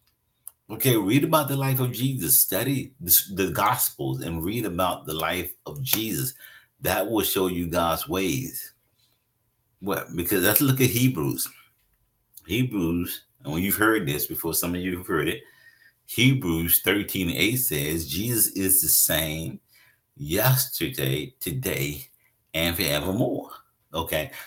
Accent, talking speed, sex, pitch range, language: American, 140 wpm, male, 85-130 Hz, English